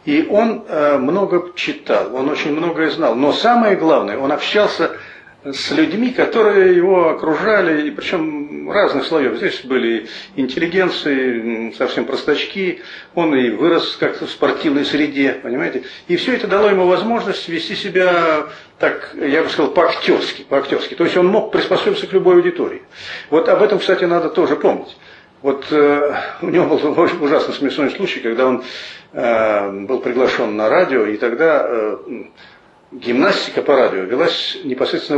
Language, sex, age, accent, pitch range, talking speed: Russian, male, 50-69, native, 145-230 Hz, 145 wpm